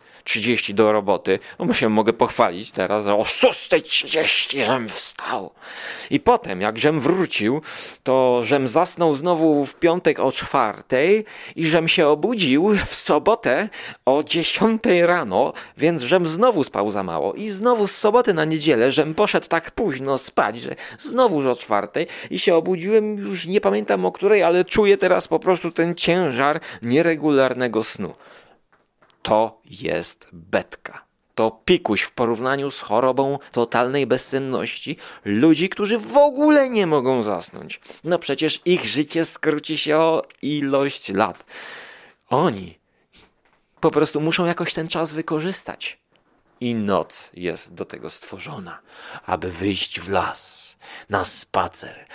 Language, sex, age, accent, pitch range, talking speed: Polish, male, 30-49, native, 115-175 Hz, 140 wpm